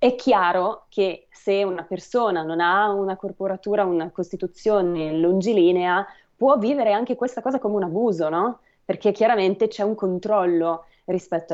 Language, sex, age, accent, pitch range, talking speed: Italian, female, 20-39, native, 180-215 Hz, 145 wpm